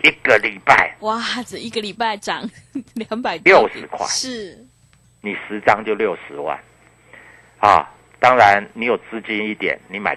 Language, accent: Chinese, native